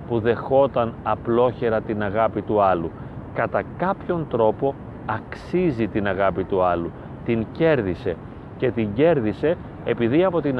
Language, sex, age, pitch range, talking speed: Greek, male, 40-59, 115-145 Hz, 130 wpm